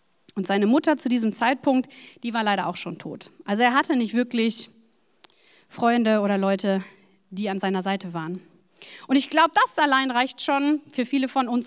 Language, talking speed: German, 185 wpm